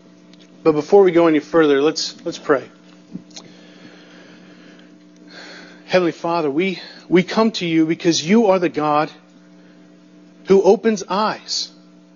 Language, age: English, 40-59